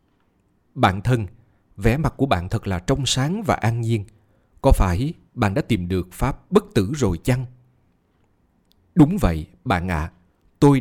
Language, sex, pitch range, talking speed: Vietnamese, male, 95-120 Hz, 165 wpm